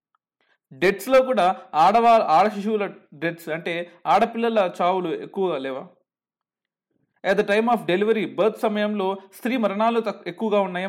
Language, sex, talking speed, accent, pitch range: Telugu, male, 120 wpm, native, 195-230 Hz